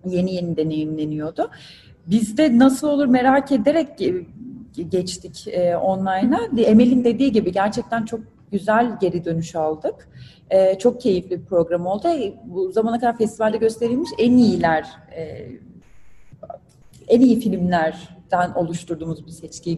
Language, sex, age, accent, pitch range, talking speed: Turkish, female, 30-49, native, 185-250 Hz, 115 wpm